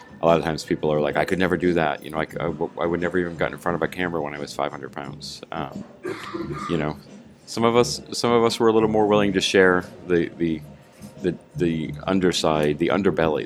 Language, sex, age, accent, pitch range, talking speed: English, male, 40-59, American, 75-90 Hz, 240 wpm